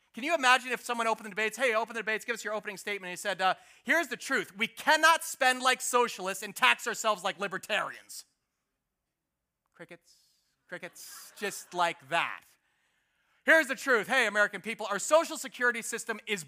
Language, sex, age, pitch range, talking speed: English, male, 30-49, 205-285 Hz, 180 wpm